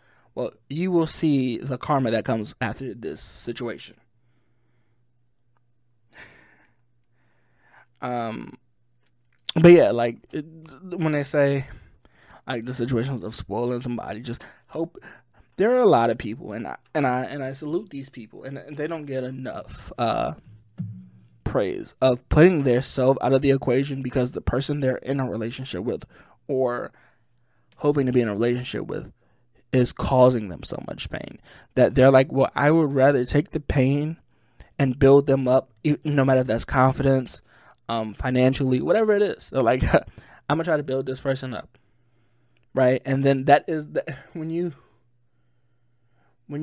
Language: English